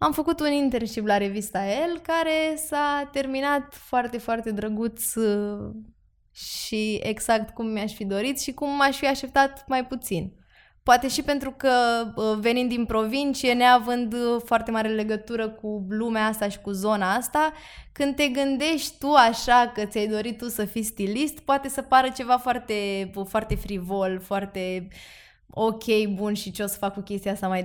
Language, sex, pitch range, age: Romanian, female, 200-260 Hz, 20-39